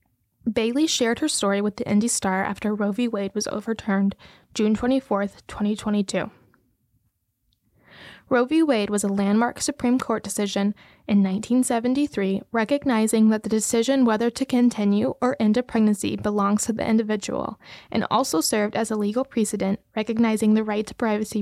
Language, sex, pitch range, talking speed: English, female, 205-245 Hz, 155 wpm